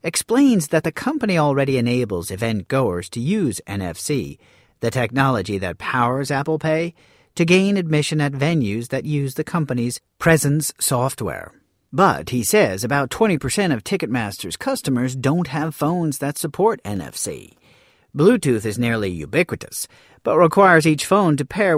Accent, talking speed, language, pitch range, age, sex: American, 145 wpm, English, 120-160 Hz, 40-59, male